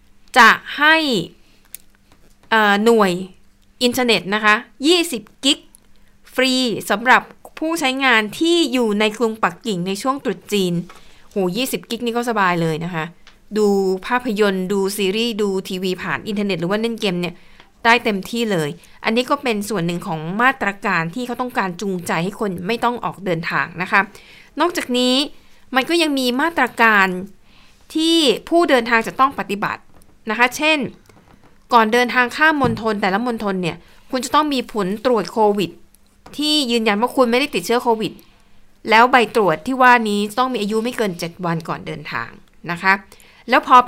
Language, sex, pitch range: Thai, female, 195-255 Hz